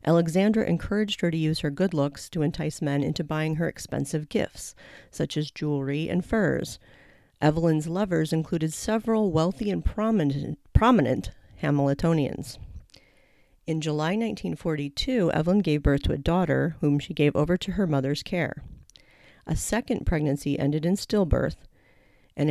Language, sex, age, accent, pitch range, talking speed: English, female, 40-59, American, 150-190 Hz, 145 wpm